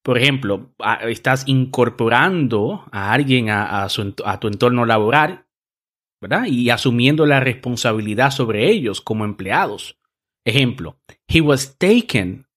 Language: Spanish